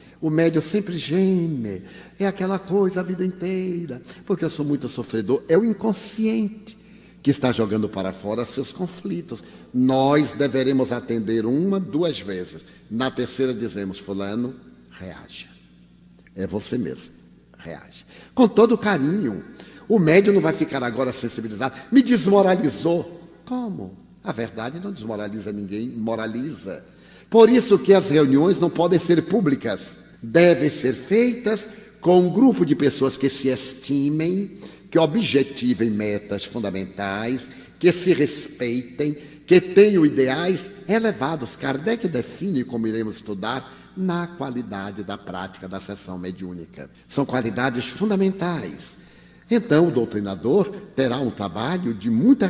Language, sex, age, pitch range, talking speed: Portuguese, male, 60-79, 115-190 Hz, 130 wpm